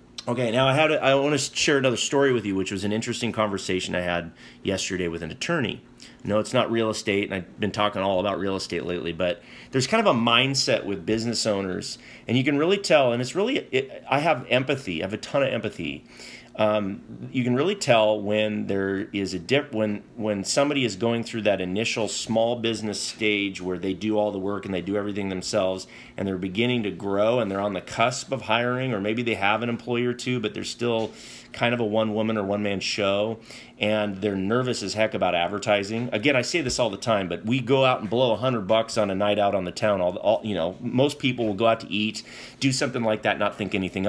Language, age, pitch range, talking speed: English, 30-49, 100-125 Hz, 240 wpm